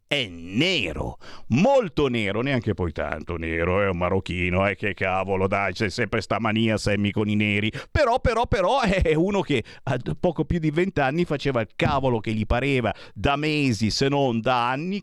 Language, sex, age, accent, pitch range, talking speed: Italian, male, 50-69, native, 100-160 Hz, 185 wpm